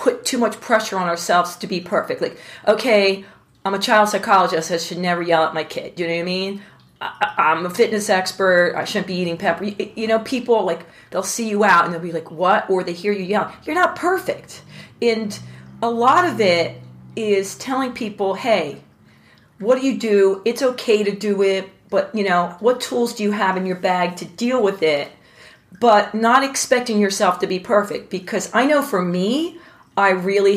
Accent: American